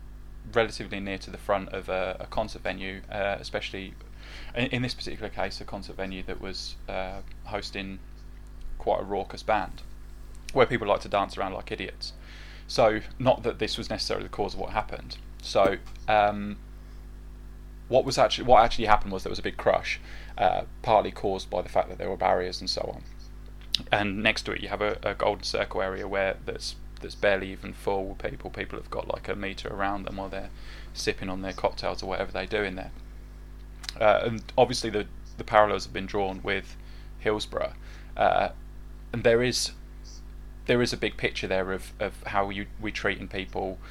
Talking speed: 190 wpm